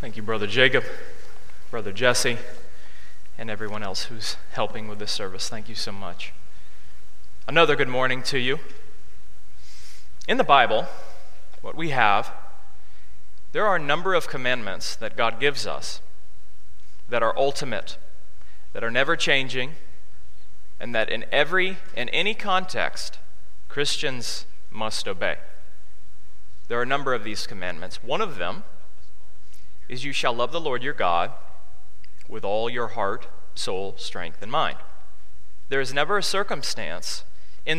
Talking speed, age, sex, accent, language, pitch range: 140 wpm, 30-49, male, American, English, 85-130 Hz